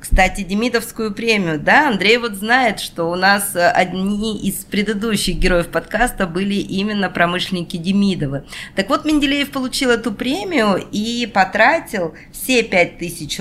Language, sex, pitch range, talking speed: Russian, female, 165-235 Hz, 130 wpm